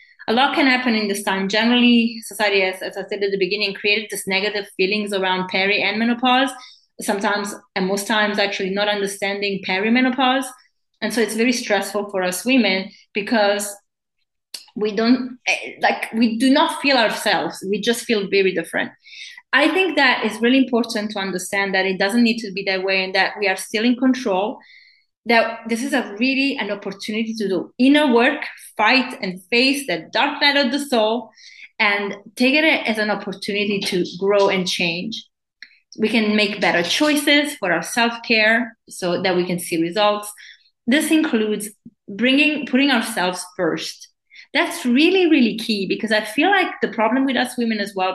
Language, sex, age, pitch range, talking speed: English, female, 20-39, 195-255 Hz, 175 wpm